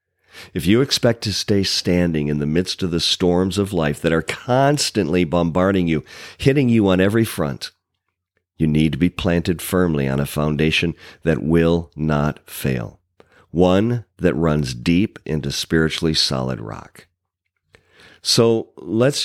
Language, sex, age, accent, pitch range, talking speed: English, male, 50-69, American, 75-95 Hz, 145 wpm